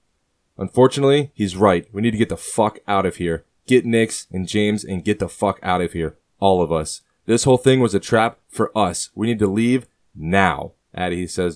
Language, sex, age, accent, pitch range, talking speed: English, male, 20-39, American, 90-105 Hz, 215 wpm